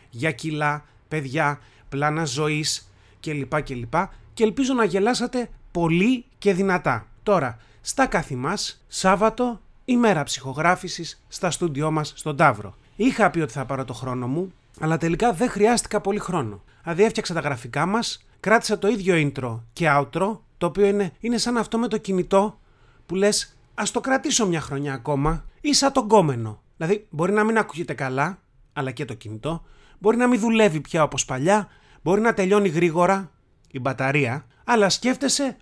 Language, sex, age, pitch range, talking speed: Greek, male, 30-49, 135-205 Hz, 160 wpm